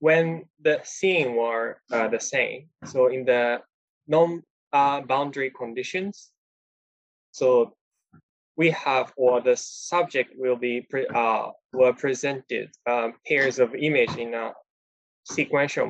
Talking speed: 120 wpm